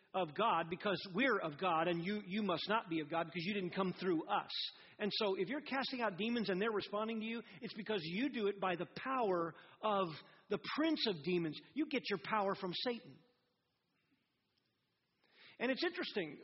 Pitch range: 180-225 Hz